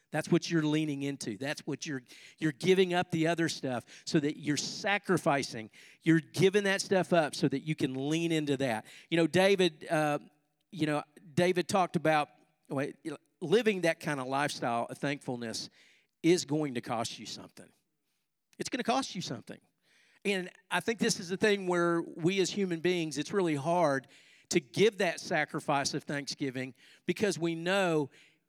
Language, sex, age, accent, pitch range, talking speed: English, male, 50-69, American, 150-195 Hz, 180 wpm